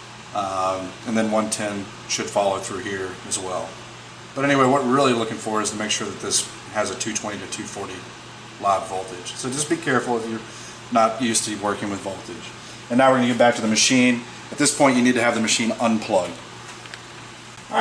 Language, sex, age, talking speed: English, male, 30-49, 210 wpm